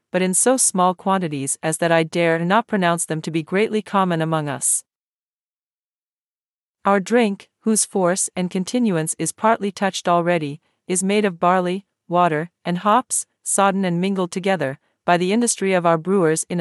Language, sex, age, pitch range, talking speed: English, female, 40-59, 165-200 Hz, 165 wpm